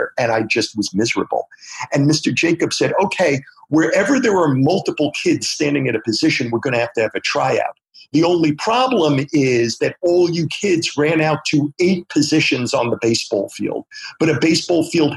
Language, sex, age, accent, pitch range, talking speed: English, male, 50-69, American, 125-160 Hz, 190 wpm